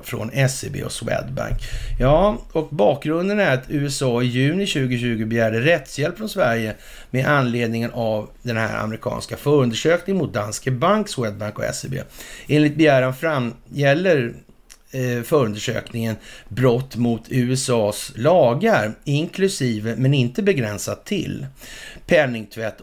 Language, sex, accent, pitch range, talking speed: Swedish, male, native, 110-145 Hz, 115 wpm